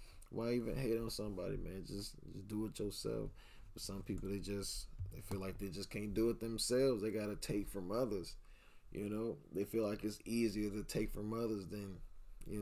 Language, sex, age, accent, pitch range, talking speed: English, male, 20-39, American, 100-125 Hz, 205 wpm